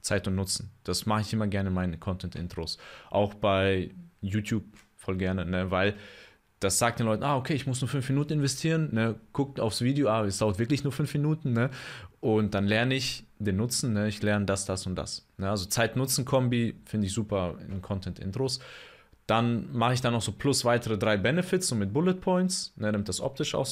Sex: male